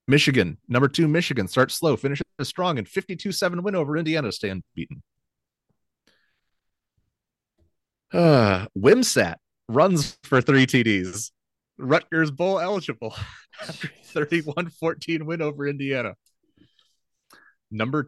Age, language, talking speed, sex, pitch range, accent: 30-49, English, 100 wpm, male, 105-150 Hz, American